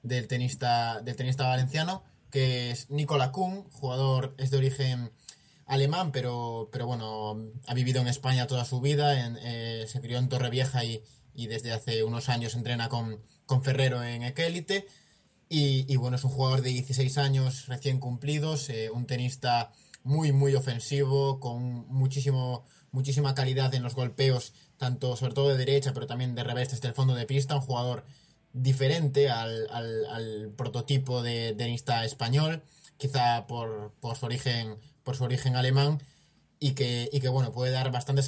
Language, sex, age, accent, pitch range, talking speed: Spanish, male, 20-39, Spanish, 120-140 Hz, 170 wpm